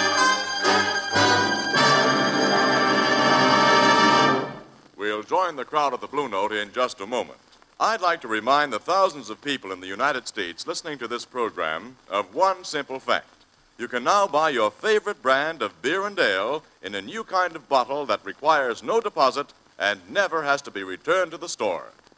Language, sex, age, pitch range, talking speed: English, male, 60-79, 130-205 Hz, 170 wpm